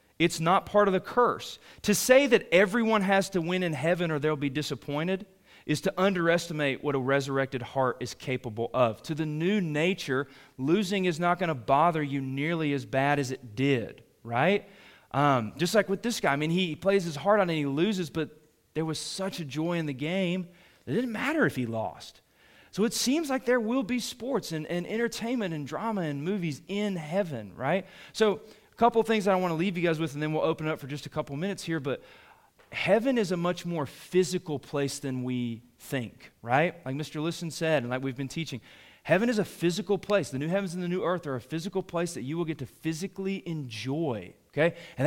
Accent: American